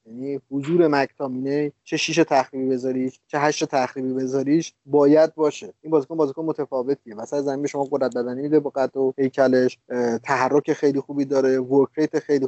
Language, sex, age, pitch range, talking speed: Persian, male, 30-49, 130-155 Hz, 155 wpm